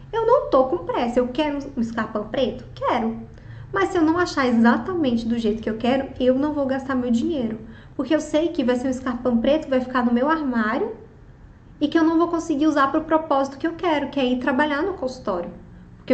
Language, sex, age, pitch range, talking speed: Portuguese, female, 20-39, 230-295 Hz, 230 wpm